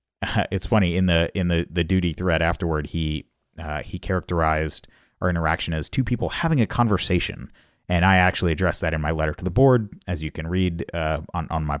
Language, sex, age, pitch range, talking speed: English, male, 30-49, 80-100 Hz, 210 wpm